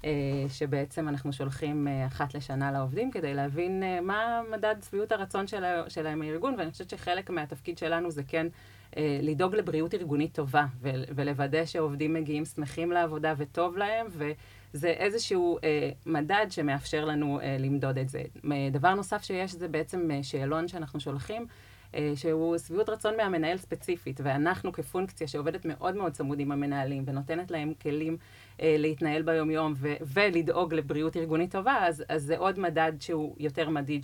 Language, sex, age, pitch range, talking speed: English, female, 30-49, 145-175 Hz, 140 wpm